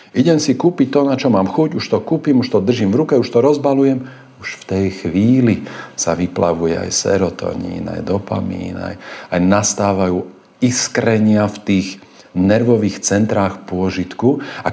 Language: Slovak